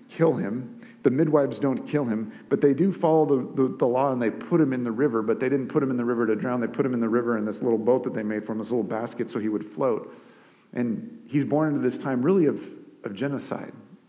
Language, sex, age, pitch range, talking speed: English, male, 40-59, 115-140 Hz, 275 wpm